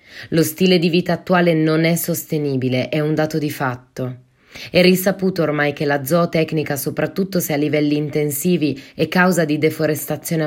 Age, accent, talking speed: 20-39, native, 160 wpm